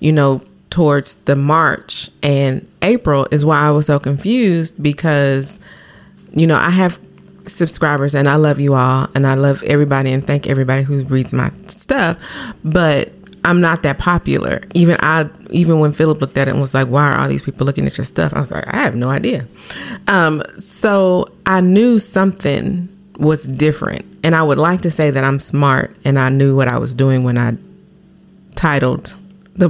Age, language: 30-49, English